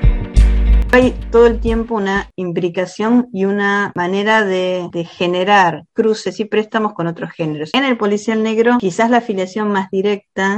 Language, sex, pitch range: Spanish, female, 170-205 Hz